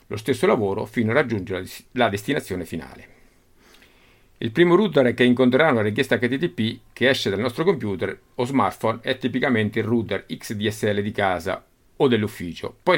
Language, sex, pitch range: Italian, male, 95-125 Hz